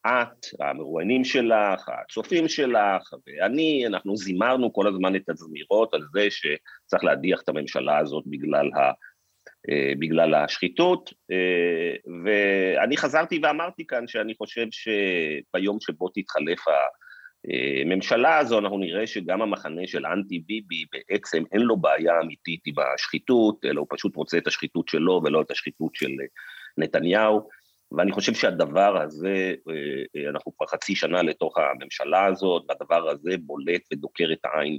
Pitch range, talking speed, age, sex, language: 85-125 Hz, 135 wpm, 40-59, male, Hebrew